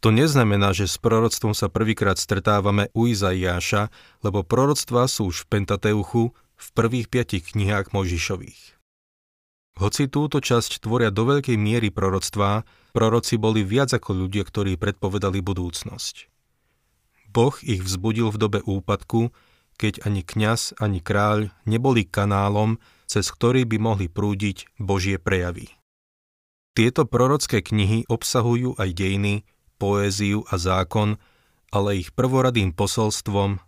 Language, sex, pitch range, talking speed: Slovak, male, 95-115 Hz, 125 wpm